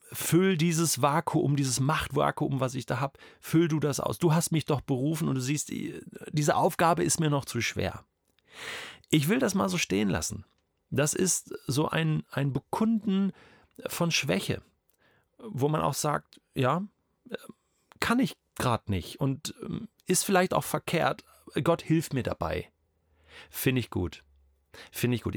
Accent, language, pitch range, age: German, German, 105-155 Hz, 40-59